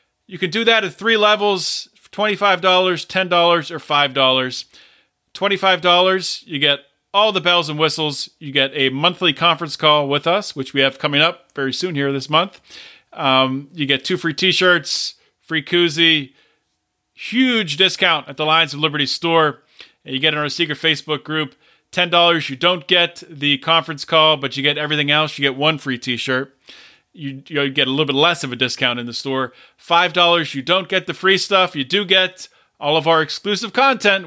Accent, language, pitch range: American, English, 140-175 Hz